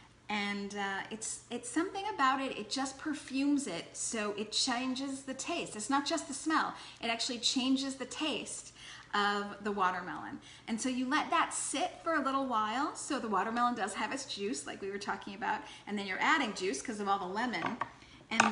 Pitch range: 215-280 Hz